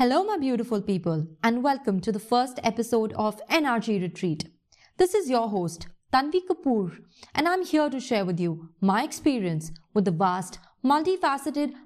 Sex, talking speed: female, 160 wpm